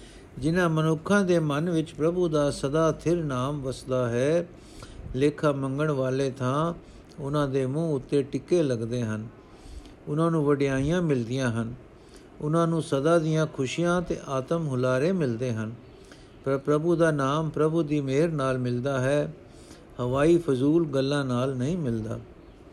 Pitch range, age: 130-155 Hz, 60-79